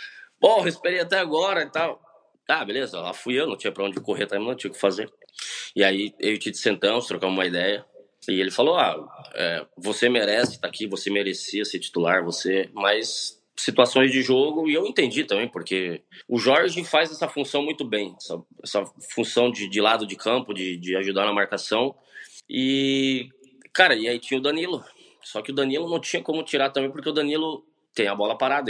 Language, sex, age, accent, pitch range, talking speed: English, male, 20-39, Brazilian, 110-155 Hz, 205 wpm